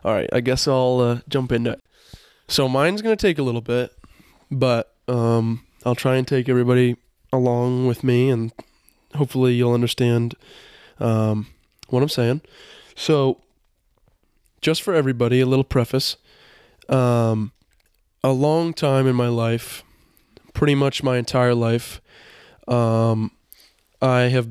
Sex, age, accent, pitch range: male, 20-39, American, 120-130 Hz